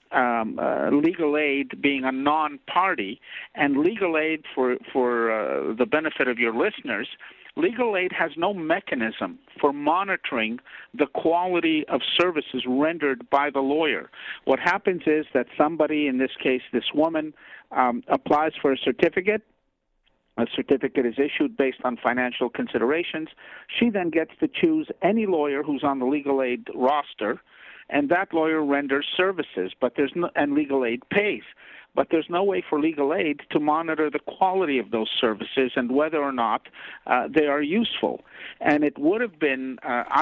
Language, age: English, 50-69